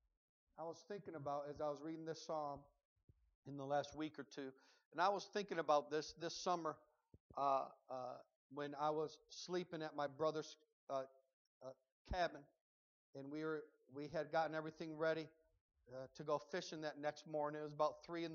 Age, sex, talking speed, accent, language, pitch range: 50-69, male, 185 wpm, American, English, 145-170 Hz